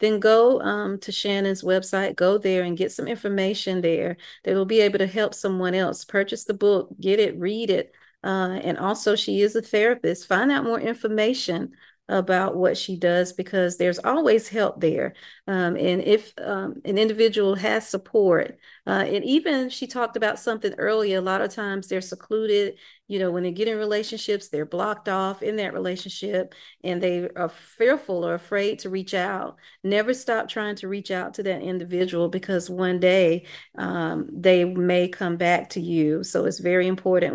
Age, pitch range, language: 40-59, 180-210 Hz, English